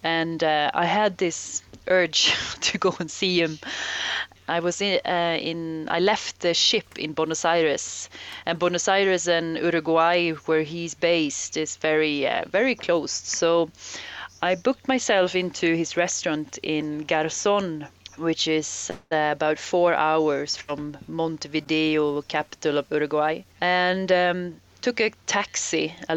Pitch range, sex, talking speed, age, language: 155-180 Hz, female, 140 wpm, 30-49, English